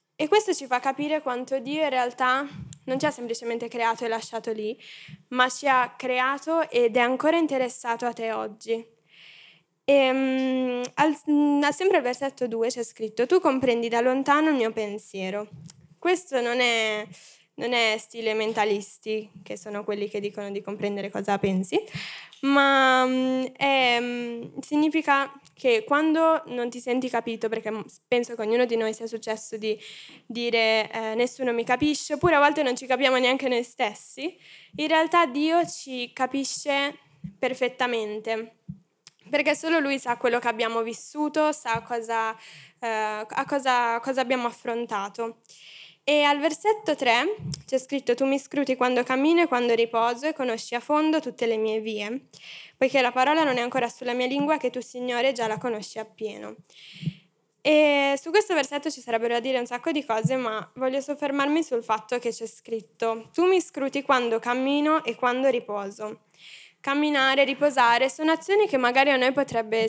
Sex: female